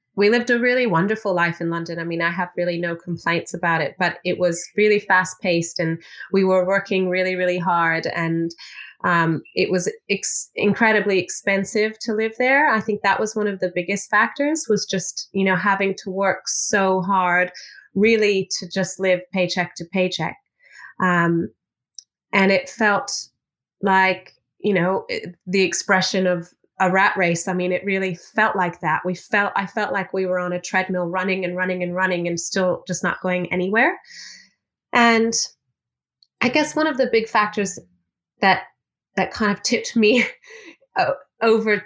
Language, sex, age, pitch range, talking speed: English, female, 30-49, 180-210 Hz, 170 wpm